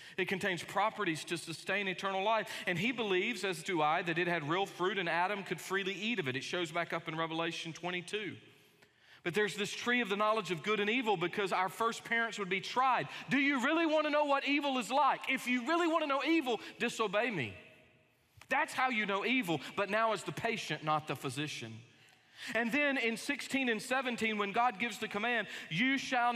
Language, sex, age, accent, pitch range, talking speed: English, male, 40-59, American, 175-230 Hz, 215 wpm